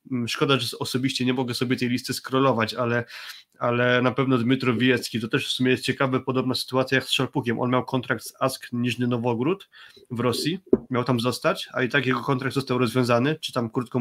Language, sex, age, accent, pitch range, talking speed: Polish, male, 20-39, native, 125-135 Hz, 205 wpm